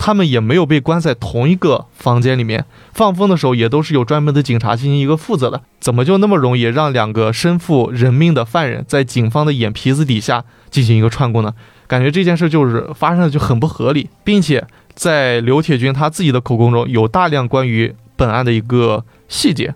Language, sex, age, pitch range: Chinese, male, 20-39, 120-150 Hz